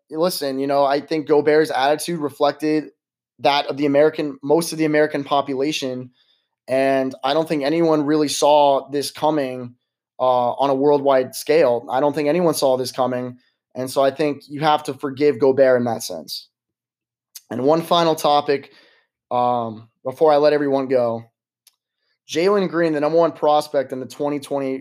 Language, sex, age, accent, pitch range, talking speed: English, male, 20-39, American, 130-155 Hz, 165 wpm